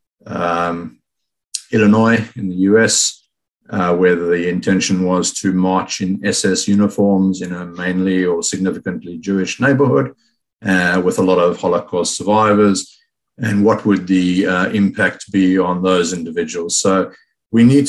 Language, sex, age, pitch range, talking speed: English, male, 50-69, 95-105 Hz, 140 wpm